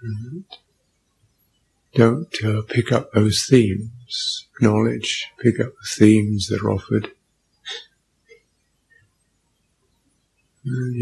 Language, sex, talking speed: English, male, 85 wpm